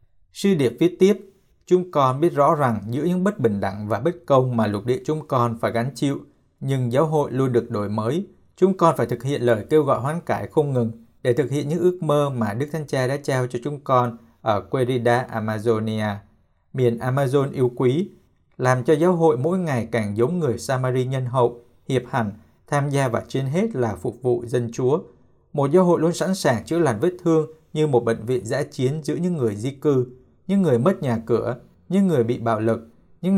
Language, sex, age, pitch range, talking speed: Vietnamese, male, 60-79, 115-155 Hz, 220 wpm